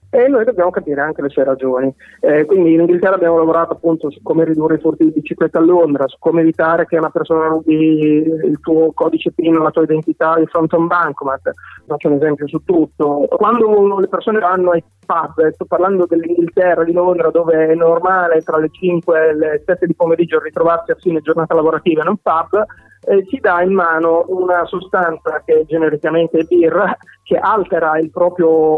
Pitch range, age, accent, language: 160-195 Hz, 30-49, native, Italian